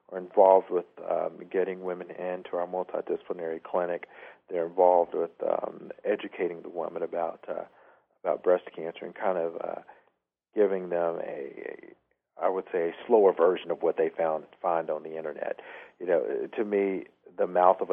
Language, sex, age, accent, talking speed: English, male, 50-69, American, 170 wpm